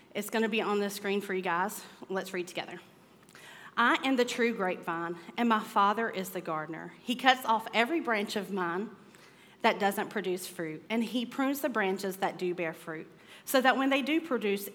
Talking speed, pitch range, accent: 205 wpm, 175-230 Hz, American